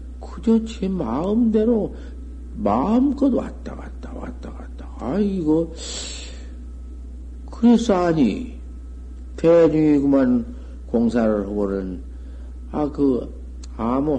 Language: Korean